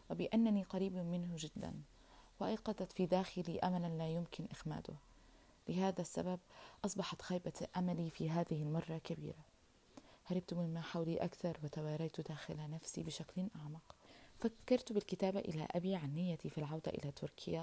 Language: Arabic